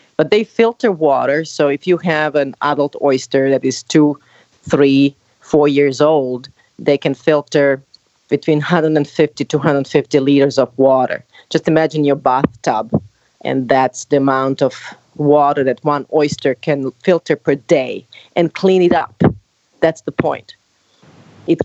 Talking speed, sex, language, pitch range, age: 145 wpm, female, Swedish, 140-170 Hz, 30-49